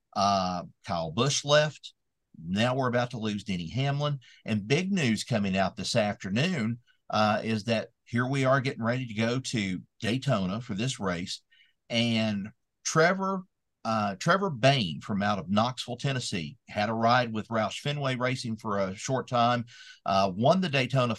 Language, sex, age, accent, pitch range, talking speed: English, male, 50-69, American, 105-130 Hz, 165 wpm